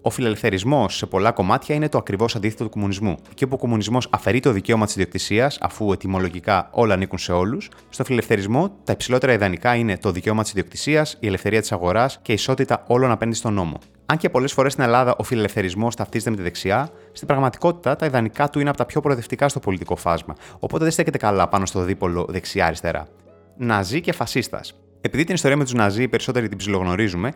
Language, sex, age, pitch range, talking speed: Greek, male, 30-49, 100-130 Hz, 200 wpm